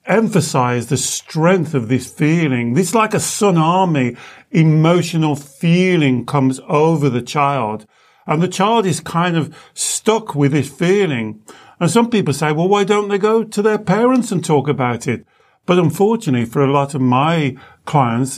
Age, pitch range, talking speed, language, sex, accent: 50-69, 130-180 Hz, 165 wpm, English, male, British